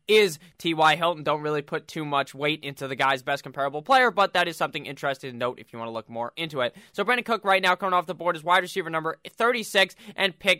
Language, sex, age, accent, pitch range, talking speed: English, male, 20-39, American, 160-195 Hz, 260 wpm